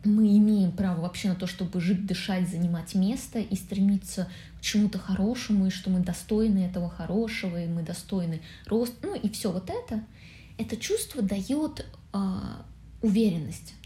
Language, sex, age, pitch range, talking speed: Russian, female, 20-39, 180-215 Hz, 155 wpm